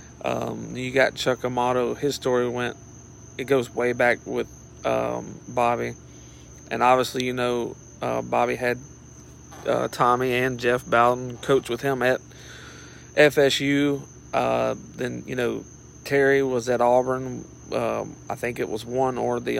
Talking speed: 145 wpm